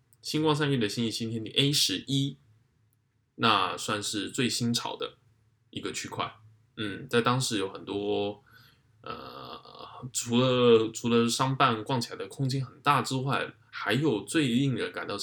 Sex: male